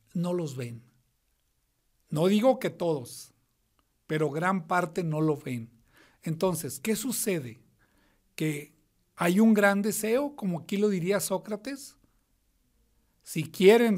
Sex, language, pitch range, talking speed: male, Spanish, 165-220 Hz, 120 wpm